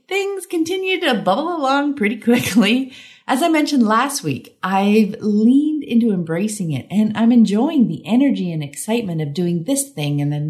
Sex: female